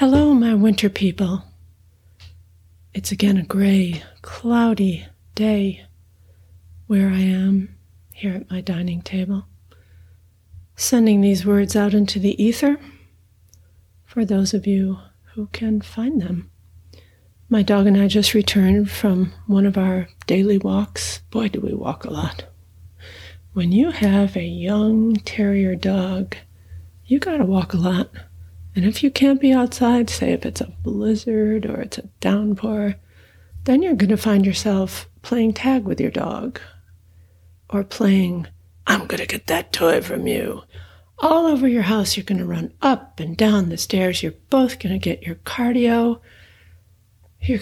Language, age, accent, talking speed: English, 40-59, American, 145 wpm